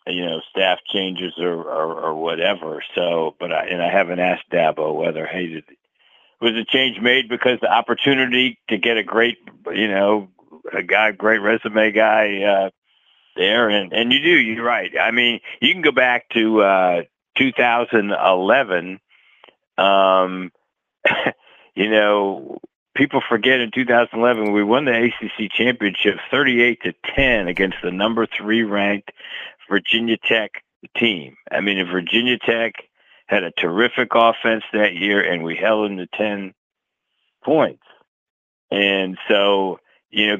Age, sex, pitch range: 50-69, male, 95-115 Hz